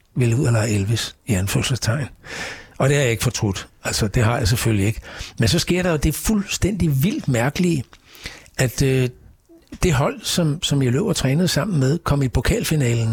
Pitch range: 120-160 Hz